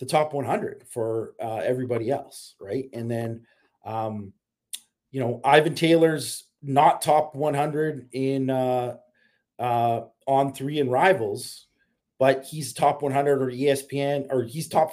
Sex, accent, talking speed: male, American, 135 wpm